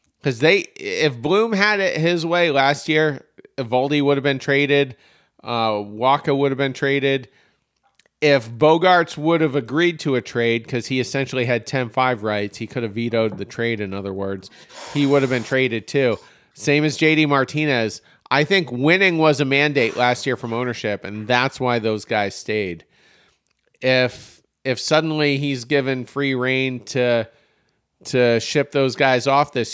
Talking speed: 170 wpm